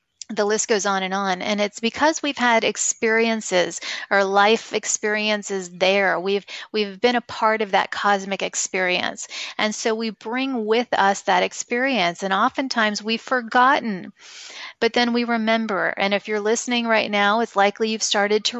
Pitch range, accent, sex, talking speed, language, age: 200-235 Hz, American, female, 170 wpm, English, 30-49